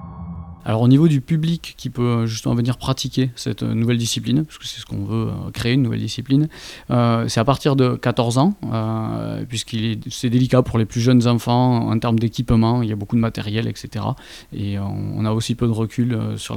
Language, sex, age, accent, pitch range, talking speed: French, male, 20-39, French, 110-130 Hz, 215 wpm